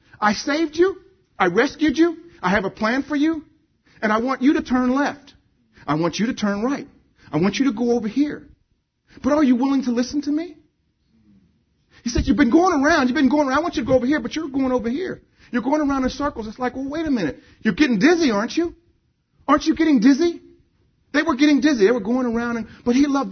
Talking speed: 240 wpm